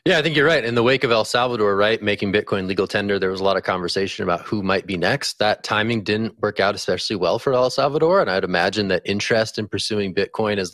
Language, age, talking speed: English, 20-39, 255 wpm